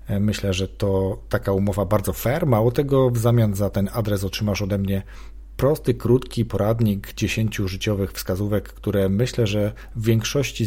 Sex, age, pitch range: male, 40-59, 95-125 Hz